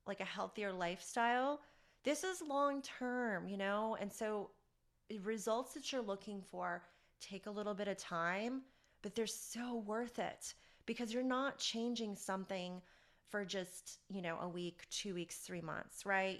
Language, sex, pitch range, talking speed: English, female, 180-230 Hz, 165 wpm